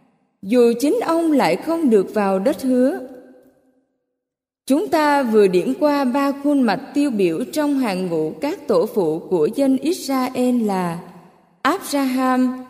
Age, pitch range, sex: 20-39, 225-285 Hz, female